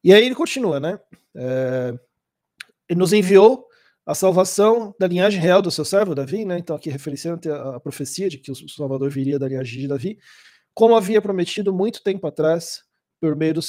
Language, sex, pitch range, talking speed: Portuguese, male, 155-210 Hz, 185 wpm